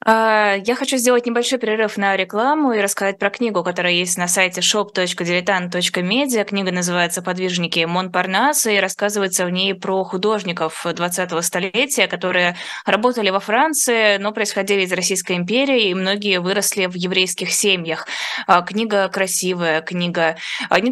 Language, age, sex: Russian, 20-39, female